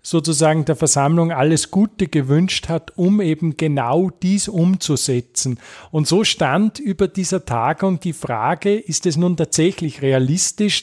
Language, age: German, 40-59